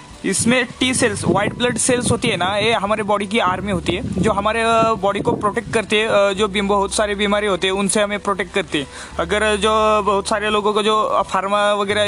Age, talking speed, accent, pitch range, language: 20-39, 215 wpm, native, 200-230 Hz, Hindi